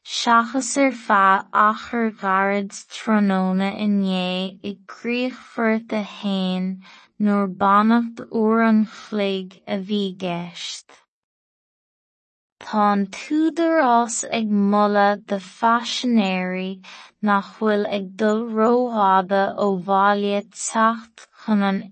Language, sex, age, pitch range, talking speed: English, female, 20-39, 195-225 Hz, 90 wpm